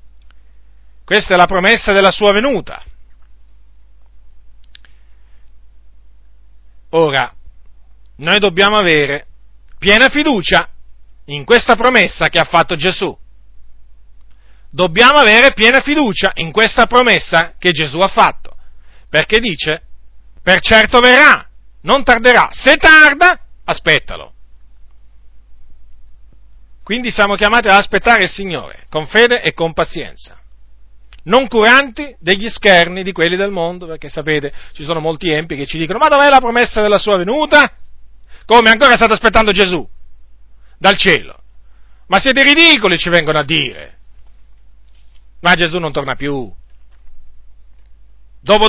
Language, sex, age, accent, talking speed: Italian, male, 40-59, native, 120 wpm